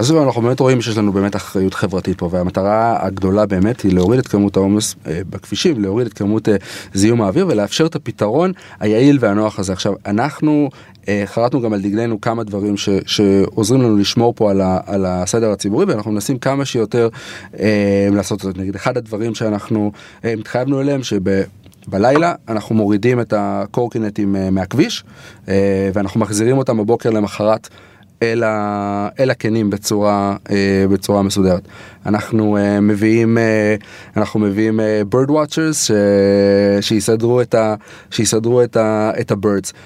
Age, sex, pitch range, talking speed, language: 30-49, male, 100-120 Hz, 145 wpm, Hebrew